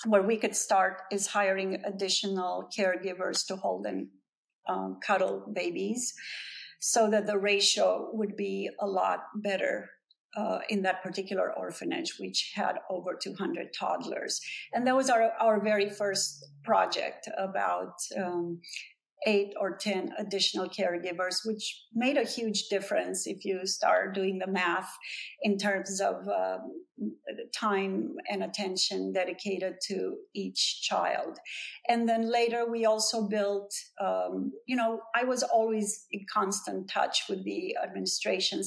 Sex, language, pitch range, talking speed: female, English, 185-220 Hz, 135 wpm